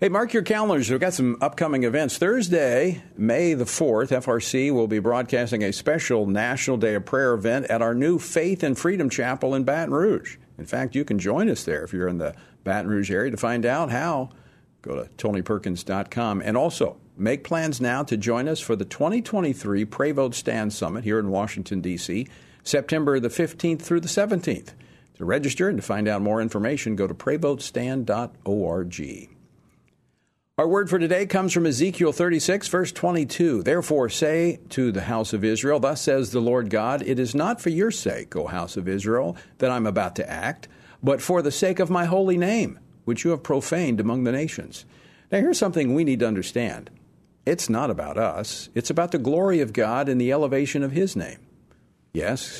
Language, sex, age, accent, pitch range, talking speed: English, male, 50-69, American, 110-170 Hz, 190 wpm